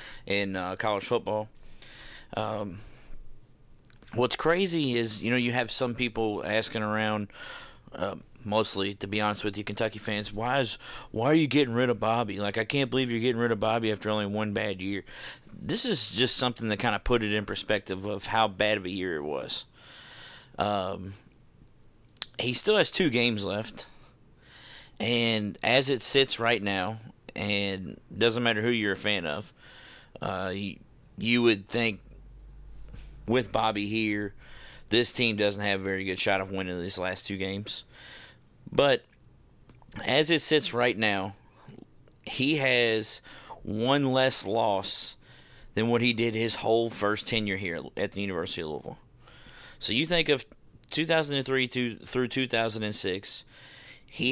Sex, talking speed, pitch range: male, 160 wpm, 105-125 Hz